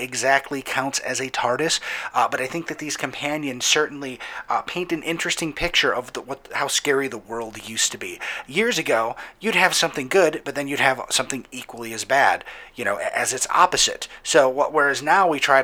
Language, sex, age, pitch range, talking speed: English, male, 30-49, 130-165 Hz, 190 wpm